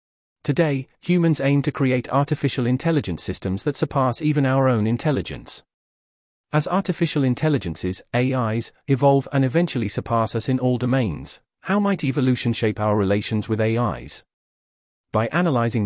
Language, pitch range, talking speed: English, 105-145 Hz, 135 wpm